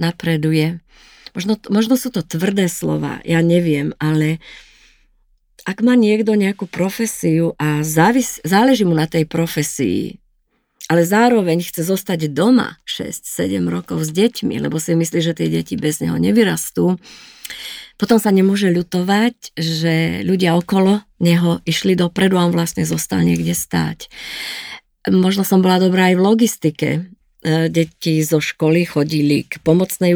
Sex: female